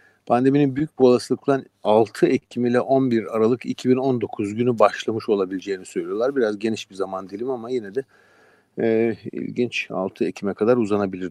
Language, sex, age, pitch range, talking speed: Turkish, male, 50-69, 105-130 Hz, 150 wpm